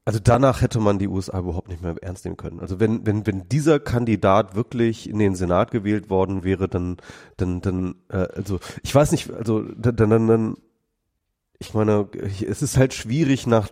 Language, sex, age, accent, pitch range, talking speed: German, male, 30-49, German, 95-115 Hz, 195 wpm